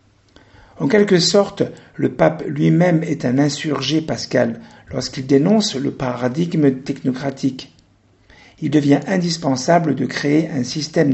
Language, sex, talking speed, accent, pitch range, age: French, male, 120 wpm, French, 125-165 Hz, 50-69